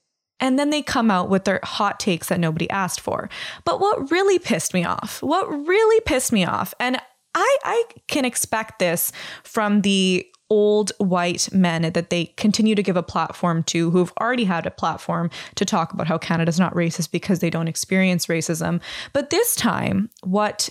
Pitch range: 180-240 Hz